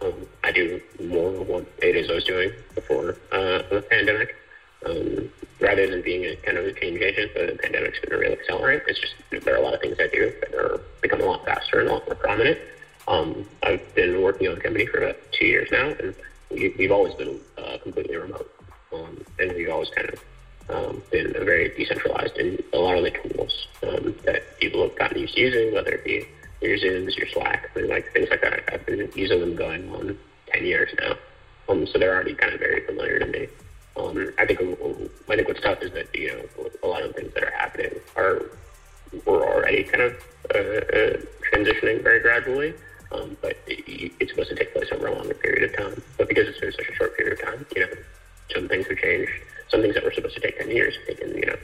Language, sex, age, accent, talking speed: English, male, 30-49, American, 230 wpm